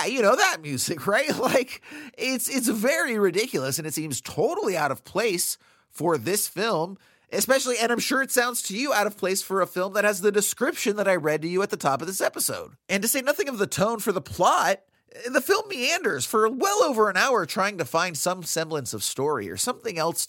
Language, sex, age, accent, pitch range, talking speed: English, male, 30-49, American, 140-230 Hz, 230 wpm